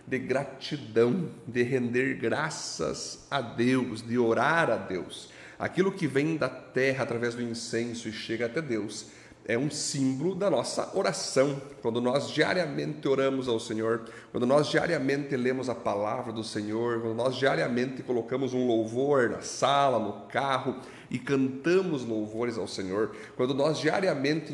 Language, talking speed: Portuguese, 150 wpm